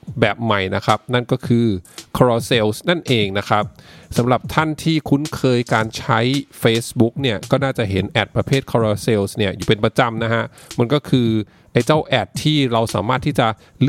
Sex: male